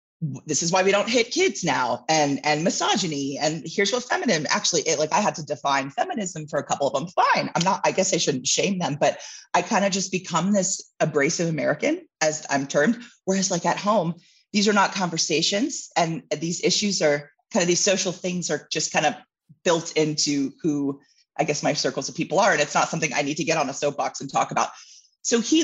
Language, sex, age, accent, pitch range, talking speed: English, female, 30-49, American, 145-195 Hz, 225 wpm